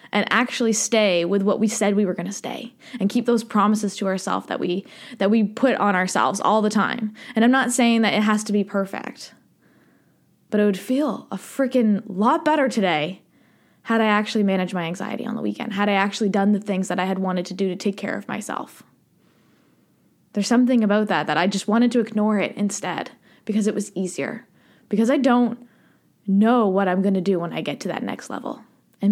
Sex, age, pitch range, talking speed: female, 20-39, 200-250 Hz, 220 wpm